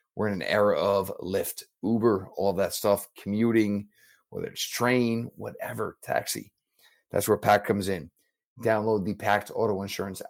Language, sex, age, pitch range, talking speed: English, male, 30-49, 100-120 Hz, 150 wpm